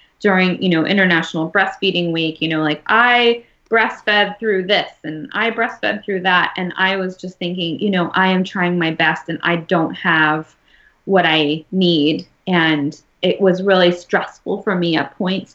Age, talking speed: 20-39, 180 wpm